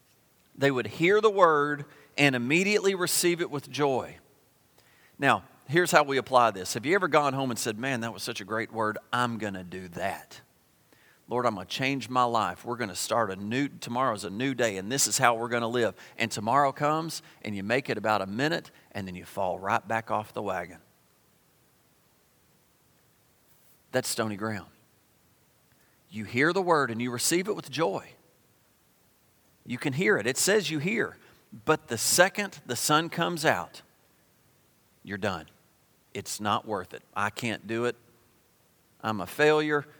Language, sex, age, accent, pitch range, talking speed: English, male, 40-59, American, 110-155 Hz, 180 wpm